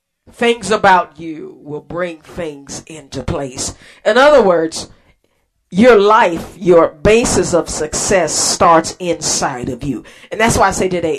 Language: English